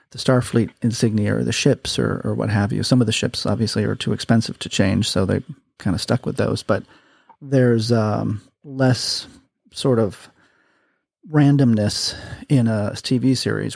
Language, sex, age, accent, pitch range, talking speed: English, male, 30-49, American, 105-130 Hz, 170 wpm